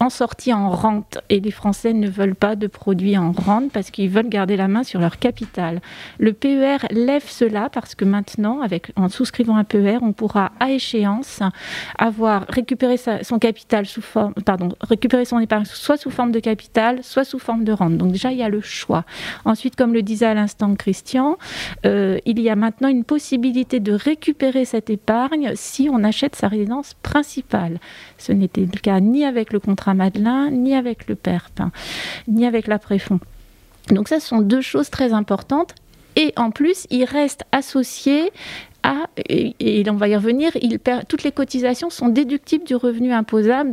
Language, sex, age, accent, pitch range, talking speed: French, female, 30-49, French, 210-265 Hz, 190 wpm